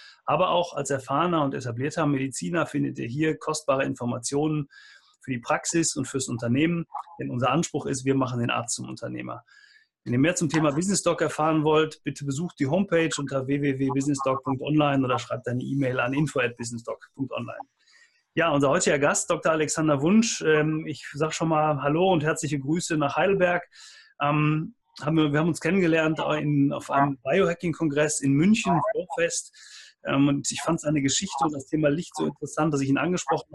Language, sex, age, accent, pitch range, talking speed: German, male, 30-49, German, 140-165 Hz, 160 wpm